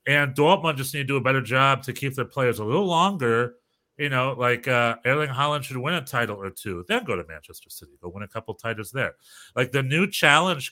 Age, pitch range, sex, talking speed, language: 30-49, 110-145 Hz, male, 240 wpm, English